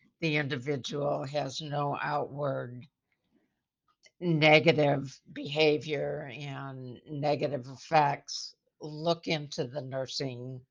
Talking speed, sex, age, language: 80 wpm, female, 60-79, English